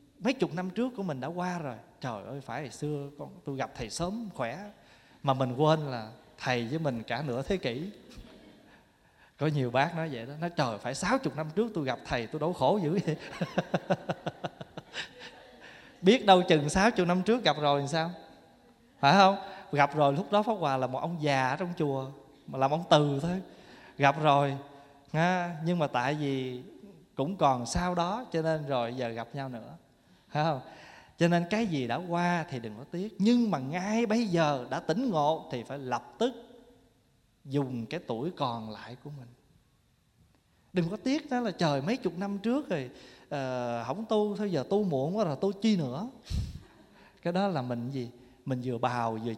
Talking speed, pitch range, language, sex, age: 195 wpm, 130-185 Hz, Vietnamese, male, 20-39